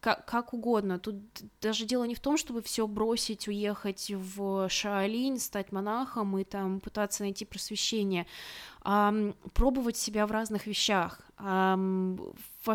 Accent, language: native, Russian